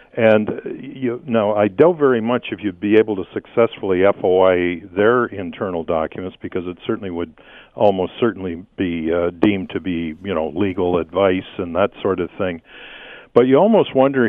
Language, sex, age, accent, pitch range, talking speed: English, male, 50-69, American, 95-120 Hz, 170 wpm